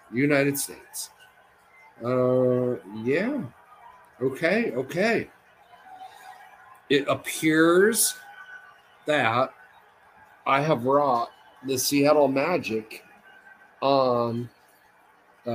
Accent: American